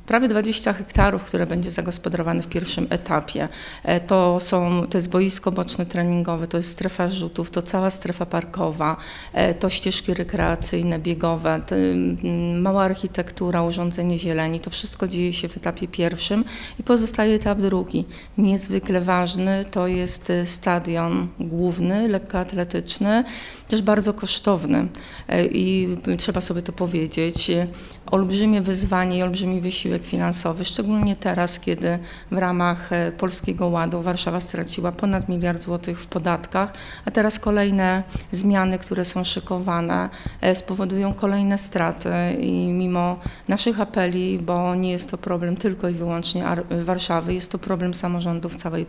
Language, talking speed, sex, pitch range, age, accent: Polish, 130 wpm, female, 170-190 Hz, 30-49, native